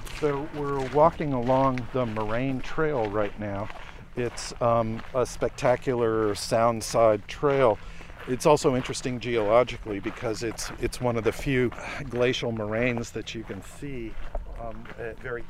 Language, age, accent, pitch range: English, 50-69, American, 105-130 Hz